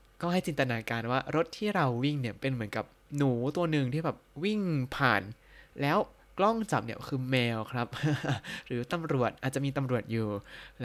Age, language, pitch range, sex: 20-39, Thai, 115-140 Hz, male